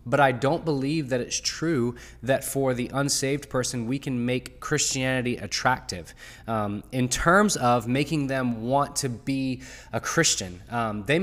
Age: 20-39